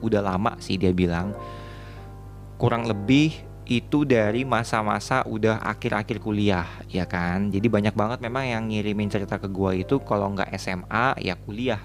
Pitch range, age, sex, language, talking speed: 105-125 Hz, 20-39, male, Indonesian, 150 wpm